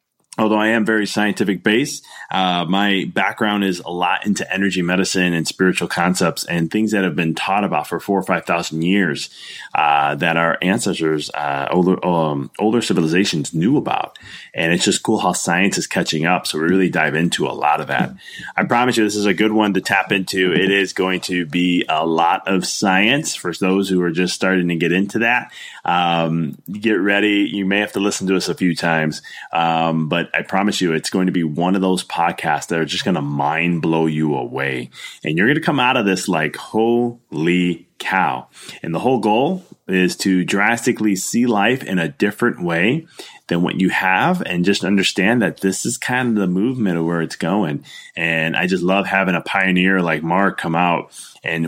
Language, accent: English, American